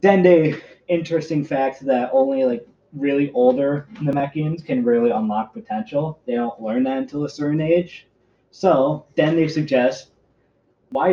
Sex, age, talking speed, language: male, 20-39, 140 wpm, English